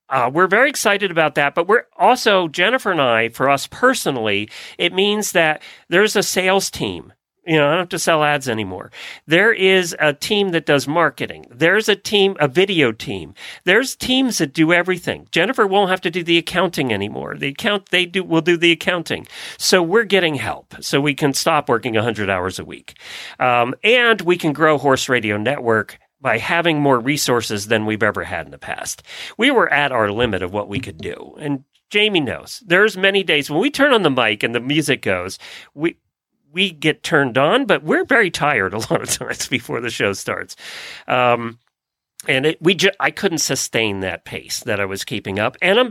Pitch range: 125-190 Hz